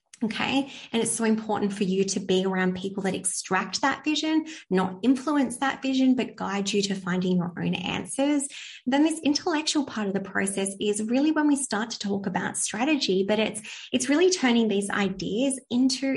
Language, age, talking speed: English, 20-39, 190 wpm